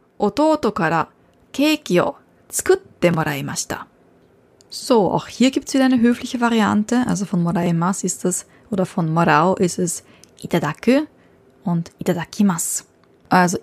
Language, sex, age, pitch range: German, female, 20-39, 180-235 Hz